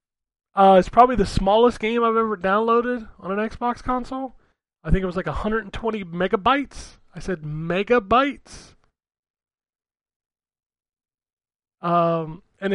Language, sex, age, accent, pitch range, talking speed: English, male, 20-39, American, 170-200 Hz, 120 wpm